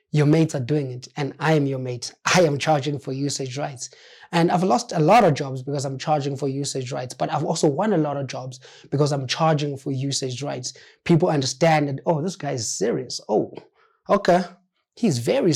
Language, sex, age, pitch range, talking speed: English, male, 20-39, 135-165 Hz, 210 wpm